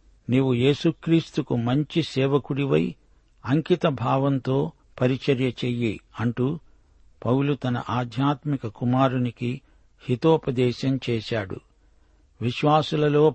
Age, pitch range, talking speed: 60-79, 115-145 Hz, 70 wpm